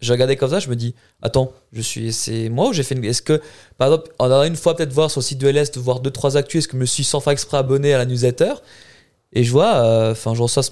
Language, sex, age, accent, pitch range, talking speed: French, male, 20-39, French, 120-145 Hz, 315 wpm